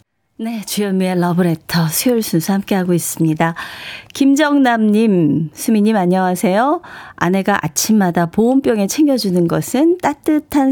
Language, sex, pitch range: Korean, female, 170-230 Hz